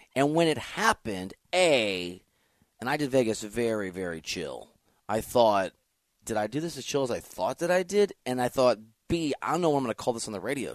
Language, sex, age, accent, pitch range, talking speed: English, male, 30-49, American, 115-165 Hz, 230 wpm